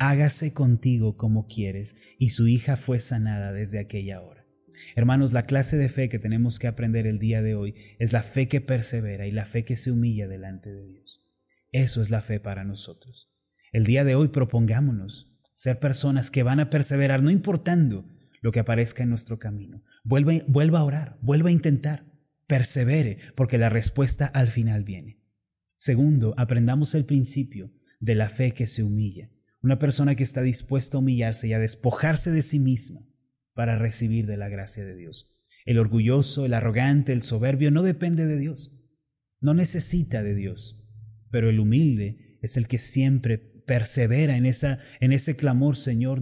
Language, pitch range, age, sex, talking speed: Spanish, 110-140 Hz, 30-49, male, 175 wpm